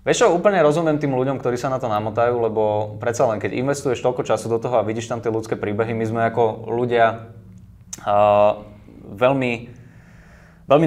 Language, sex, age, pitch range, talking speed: Slovak, male, 20-39, 100-125 Hz, 180 wpm